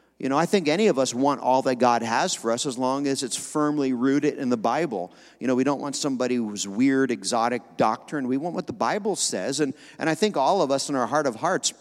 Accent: American